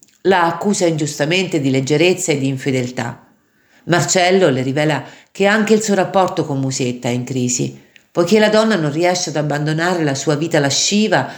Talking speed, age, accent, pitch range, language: 170 wpm, 50-69, native, 145-190 Hz, Italian